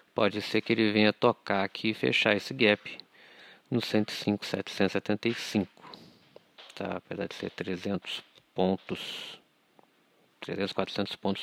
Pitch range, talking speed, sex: 100-130 Hz, 115 wpm, male